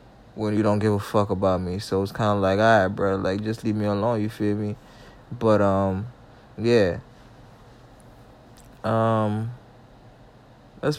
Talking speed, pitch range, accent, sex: 155 wpm, 105-120 Hz, American, male